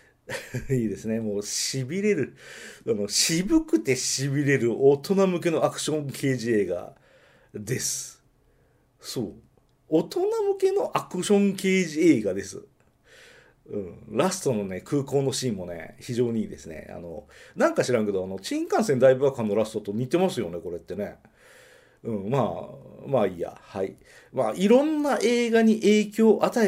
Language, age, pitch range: Japanese, 40-59, 120-195 Hz